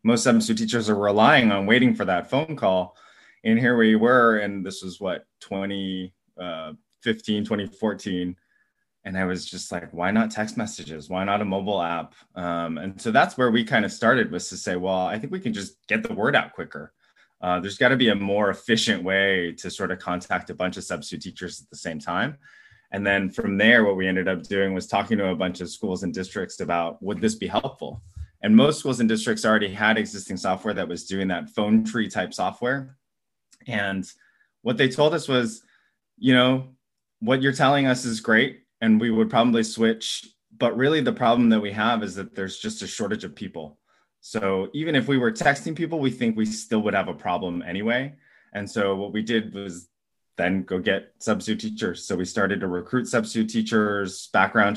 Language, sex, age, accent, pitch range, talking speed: English, male, 20-39, American, 95-115 Hz, 205 wpm